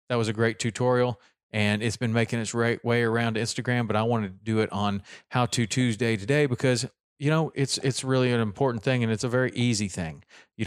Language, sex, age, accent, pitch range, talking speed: English, male, 40-59, American, 115-130 Hz, 230 wpm